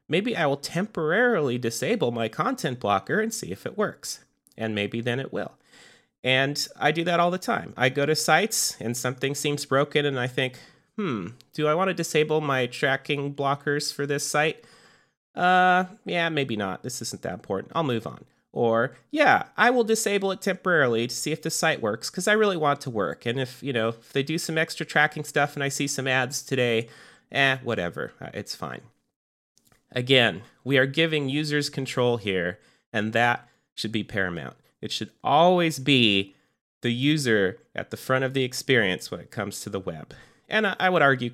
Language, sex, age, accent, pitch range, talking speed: English, male, 30-49, American, 120-165 Hz, 195 wpm